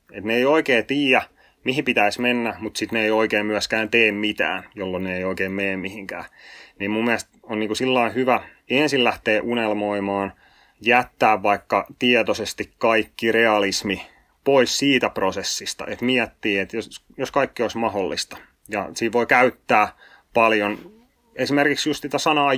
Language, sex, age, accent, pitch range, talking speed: Finnish, male, 30-49, native, 100-120 Hz, 150 wpm